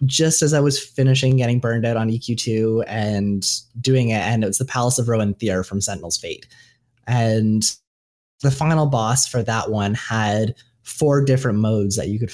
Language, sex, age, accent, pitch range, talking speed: English, male, 30-49, American, 110-130 Hz, 185 wpm